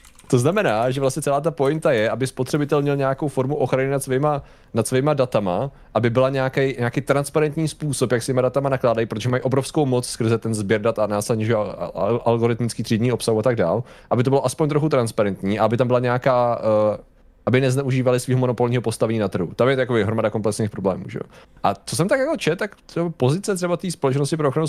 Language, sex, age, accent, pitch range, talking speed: Czech, male, 30-49, native, 115-140 Hz, 205 wpm